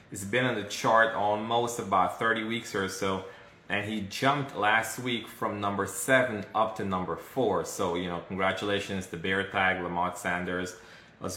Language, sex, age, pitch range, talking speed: English, male, 20-39, 90-110 Hz, 175 wpm